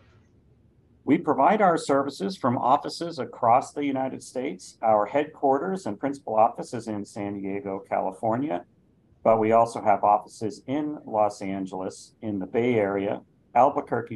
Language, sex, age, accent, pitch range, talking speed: English, male, 50-69, American, 100-125 Hz, 140 wpm